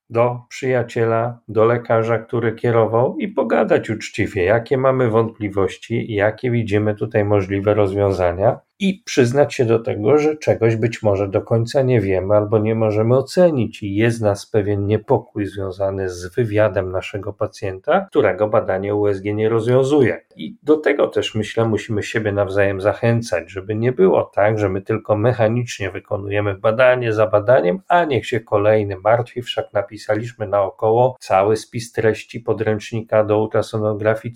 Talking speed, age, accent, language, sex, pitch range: 145 wpm, 40-59, native, Polish, male, 100-120 Hz